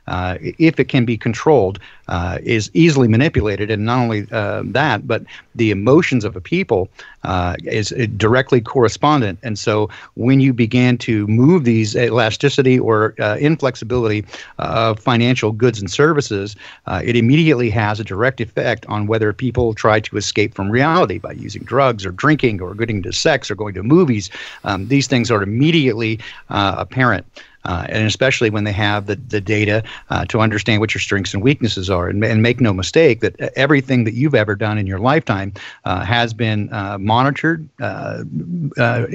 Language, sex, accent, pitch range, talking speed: English, male, American, 105-130 Hz, 180 wpm